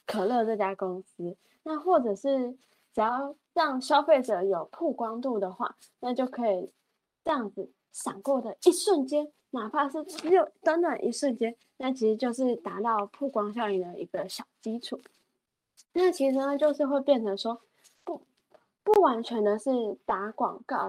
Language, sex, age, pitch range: Chinese, female, 20-39, 210-280 Hz